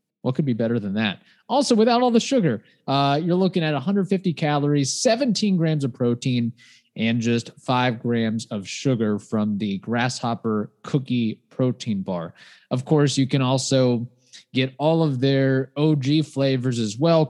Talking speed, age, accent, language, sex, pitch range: 160 wpm, 20-39, American, English, male, 120-150 Hz